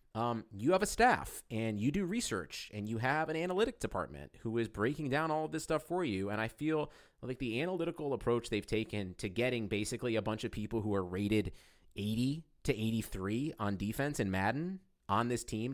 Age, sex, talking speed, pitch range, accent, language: 30-49, male, 205 wpm, 105-160 Hz, American, English